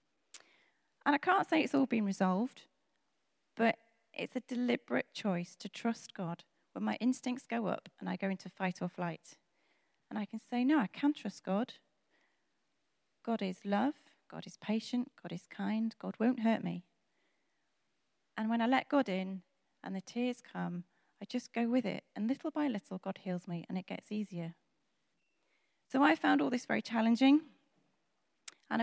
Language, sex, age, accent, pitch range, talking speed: English, female, 30-49, British, 190-275 Hz, 175 wpm